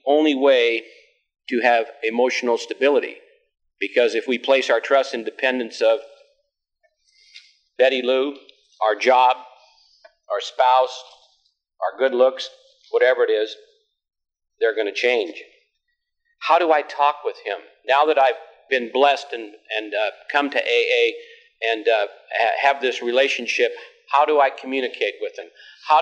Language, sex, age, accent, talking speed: English, male, 50-69, American, 140 wpm